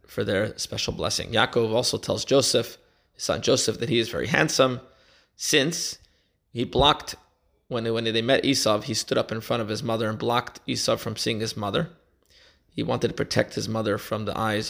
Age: 20-39